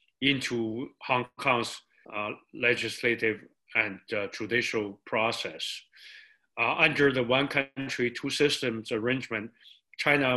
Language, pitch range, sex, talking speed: English, 120-160 Hz, male, 105 wpm